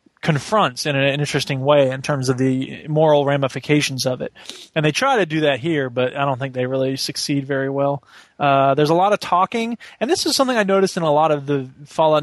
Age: 20-39